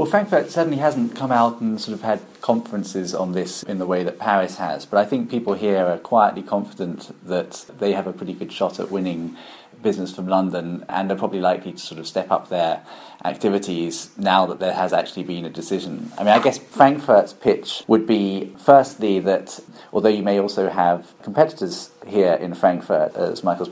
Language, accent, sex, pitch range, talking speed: English, British, male, 90-100 Hz, 200 wpm